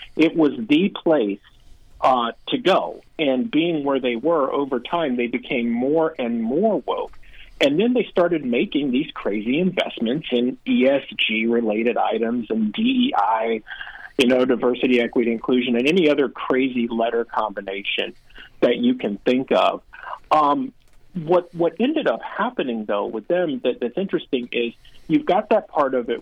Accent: American